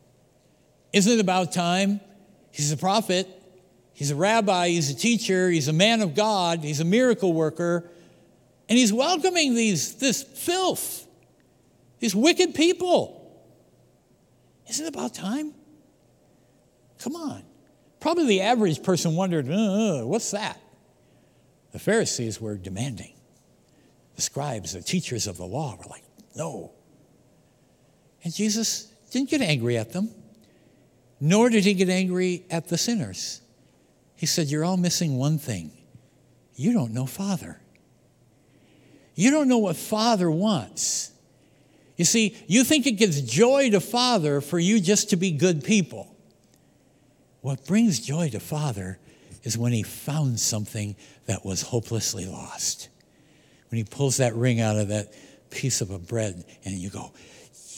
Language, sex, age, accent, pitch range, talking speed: English, male, 60-79, American, 130-210 Hz, 140 wpm